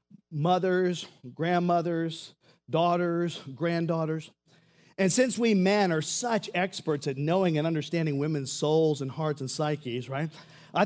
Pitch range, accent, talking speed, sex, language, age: 135-185 Hz, American, 125 wpm, male, English, 40-59